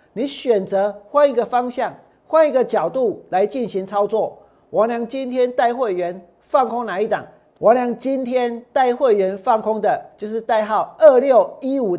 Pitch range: 205-275 Hz